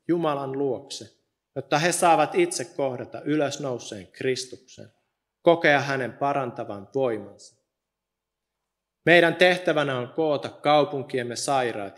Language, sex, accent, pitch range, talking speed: Finnish, male, native, 120-160 Hz, 95 wpm